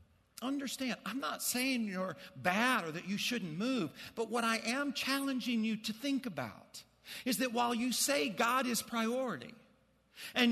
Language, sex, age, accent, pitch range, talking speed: English, male, 50-69, American, 200-255 Hz, 165 wpm